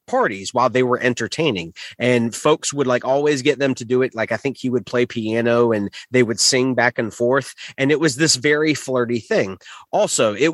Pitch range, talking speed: 120-150 Hz, 215 wpm